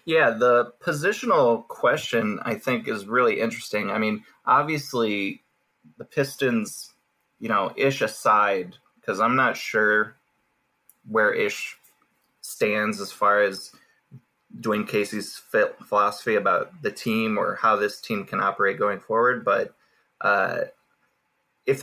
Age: 20-39